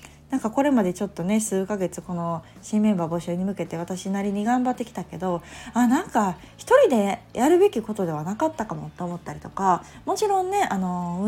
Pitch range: 170-230 Hz